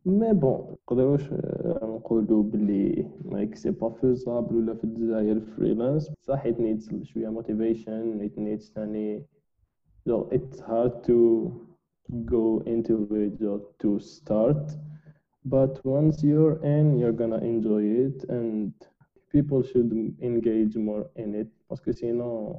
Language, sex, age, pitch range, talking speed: Arabic, male, 20-39, 110-120 Hz, 110 wpm